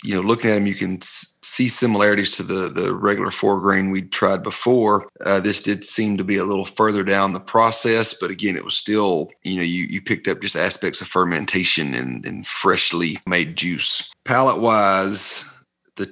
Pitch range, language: 95-110 Hz, English